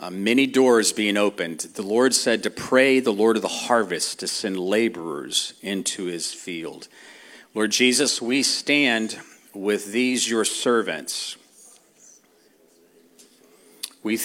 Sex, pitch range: male, 115-160 Hz